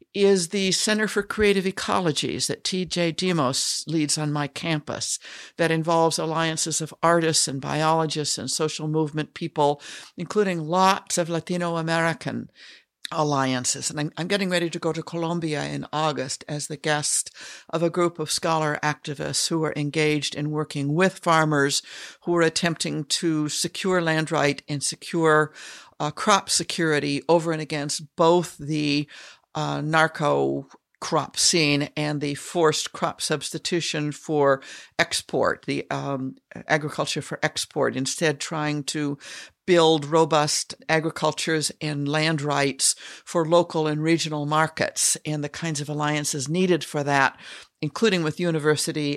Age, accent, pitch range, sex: 60-79, American, 150-170 Hz, female